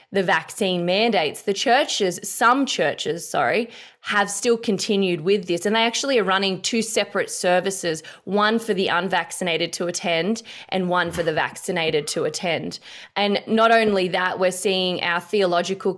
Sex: female